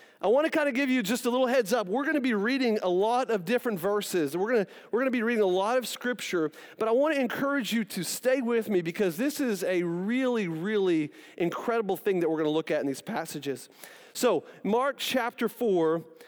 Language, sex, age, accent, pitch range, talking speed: English, male, 40-59, American, 175-250 Hz, 230 wpm